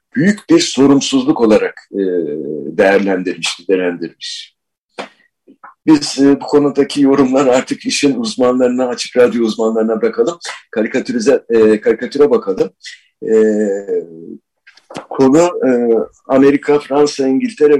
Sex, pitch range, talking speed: male, 125-195 Hz, 80 wpm